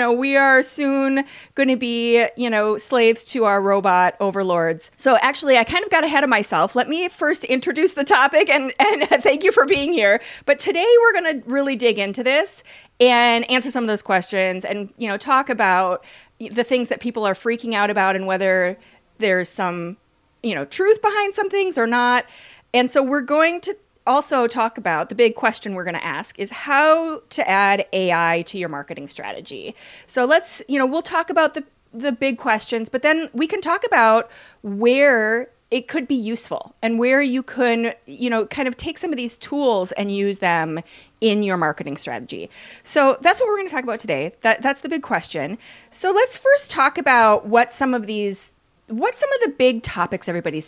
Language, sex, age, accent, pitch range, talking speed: English, female, 30-49, American, 205-285 Hz, 205 wpm